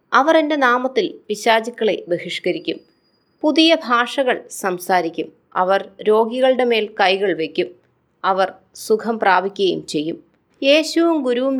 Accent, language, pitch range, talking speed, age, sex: native, Malayalam, 200-255 Hz, 100 wpm, 20-39, female